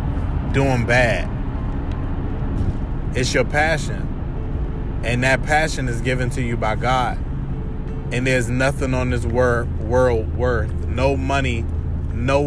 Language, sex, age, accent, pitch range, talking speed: English, male, 20-39, American, 75-125 Hz, 115 wpm